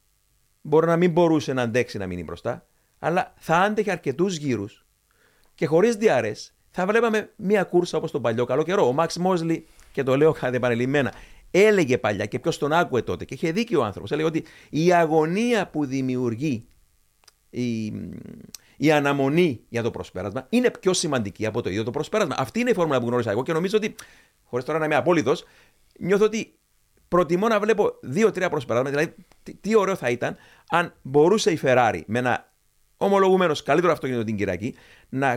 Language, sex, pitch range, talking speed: Greek, male, 120-175 Hz, 180 wpm